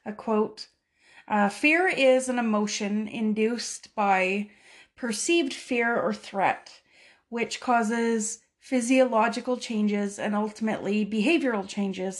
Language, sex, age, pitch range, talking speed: English, female, 30-49, 210-240 Hz, 105 wpm